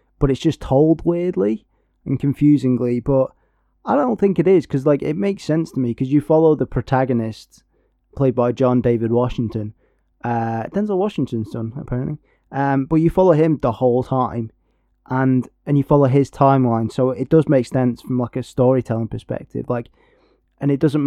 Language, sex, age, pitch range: English, male, 20-39, 115-145 Hz